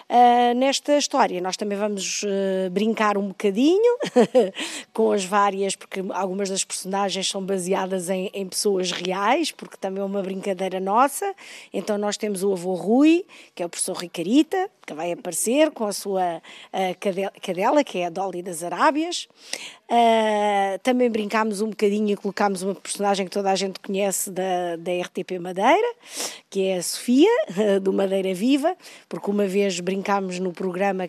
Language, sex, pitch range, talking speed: Portuguese, female, 185-215 Hz, 160 wpm